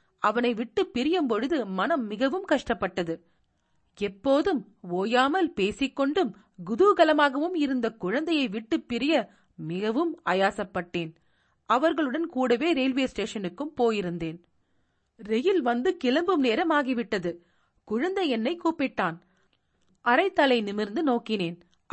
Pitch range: 190-280 Hz